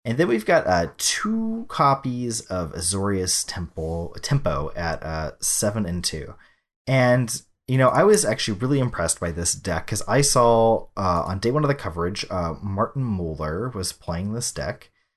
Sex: male